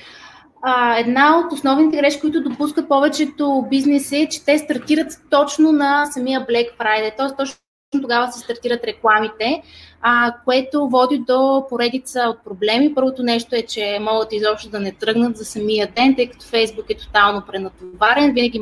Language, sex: Bulgarian, female